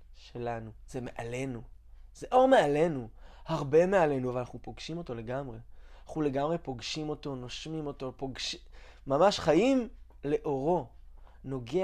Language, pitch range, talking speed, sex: Hebrew, 125-185 Hz, 120 wpm, male